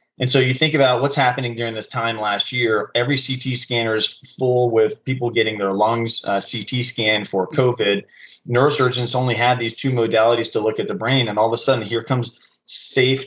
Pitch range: 105-125 Hz